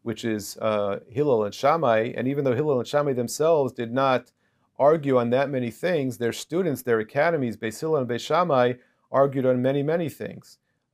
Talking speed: 185 wpm